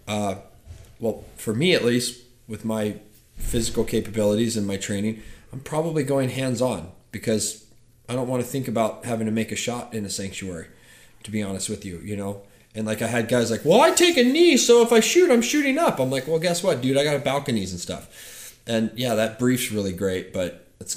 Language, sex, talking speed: English, male, 215 wpm